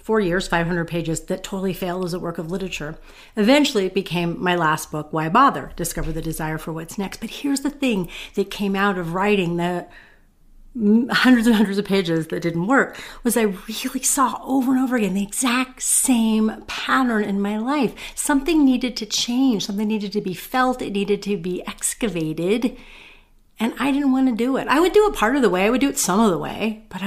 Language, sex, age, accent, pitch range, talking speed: English, female, 40-59, American, 180-250 Hz, 215 wpm